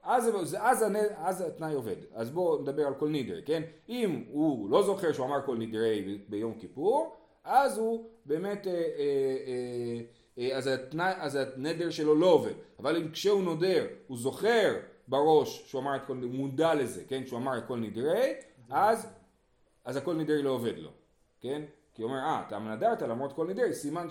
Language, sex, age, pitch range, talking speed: Hebrew, male, 30-49, 120-175 Hz, 170 wpm